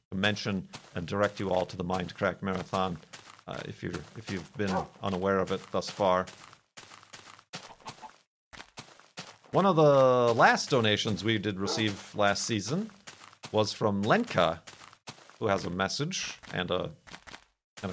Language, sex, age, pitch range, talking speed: English, male, 40-59, 105-175 Hz, 135 wpm